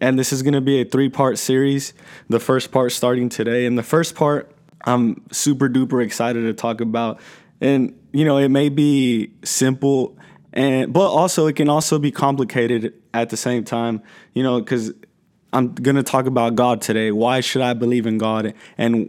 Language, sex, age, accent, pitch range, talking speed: English, male, 20-39, American, 115-135 Hz, 190 wpm